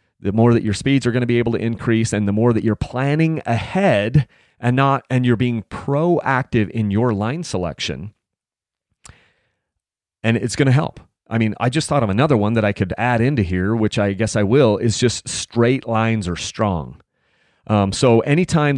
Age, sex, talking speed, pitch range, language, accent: 30-49, male, 200 wpm, 105-135 Hz, English, American